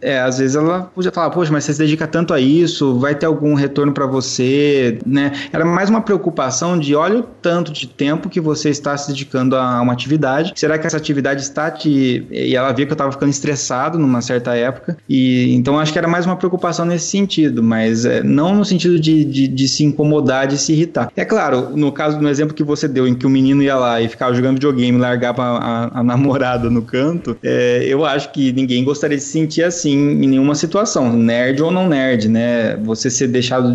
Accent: Brazilian